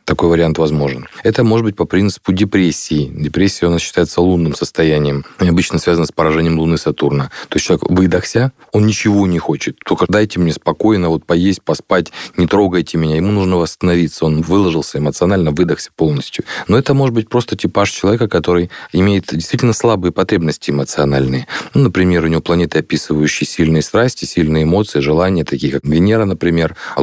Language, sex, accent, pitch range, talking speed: Russian, male, native, 80-105 Hz, 170 wpm